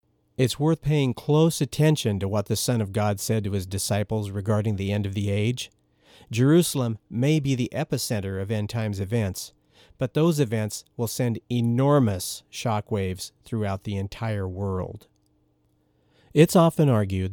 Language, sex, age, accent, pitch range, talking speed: English, male, 50-69, American, 100-125 Hz, 150 wpm